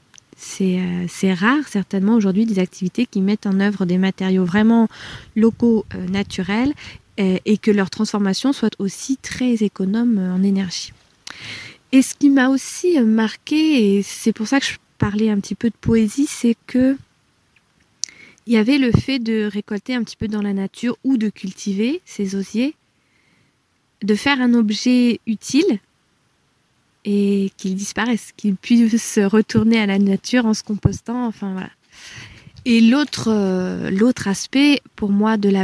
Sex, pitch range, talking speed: female, 195-235 Hz, 160 wpm